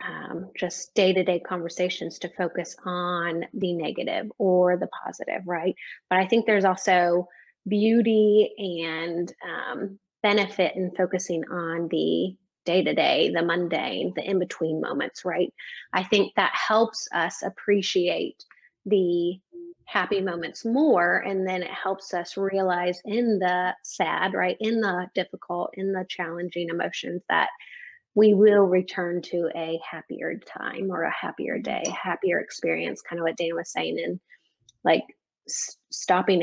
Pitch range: 175-210 Hz